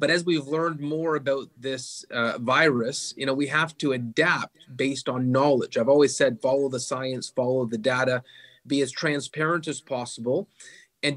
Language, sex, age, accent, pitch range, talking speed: English, male, 30-49, American, 130-160 Hz, 175 wpm